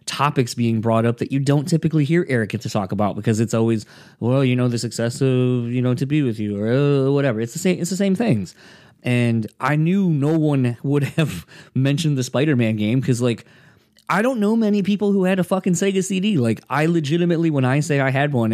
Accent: American